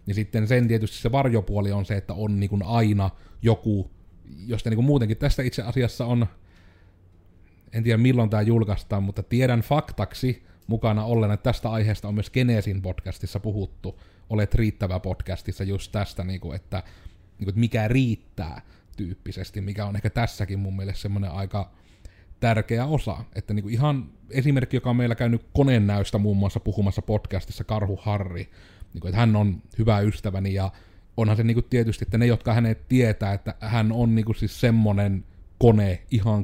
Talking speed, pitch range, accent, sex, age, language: 170 wpm, 95-115 Hz, native, male, 30-49, Finnish